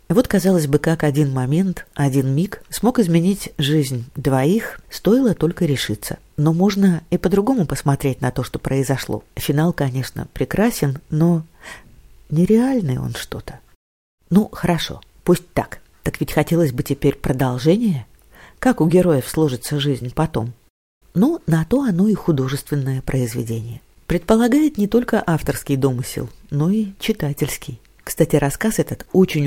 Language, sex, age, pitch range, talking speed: Russian, female, 40-59, 135-180 Hz, 135 wpm